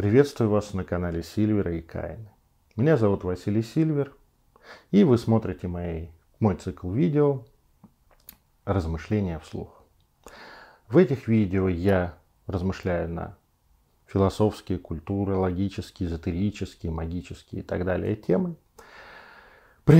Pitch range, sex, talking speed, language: 85-115 Hz, male, 100 wpm, Russian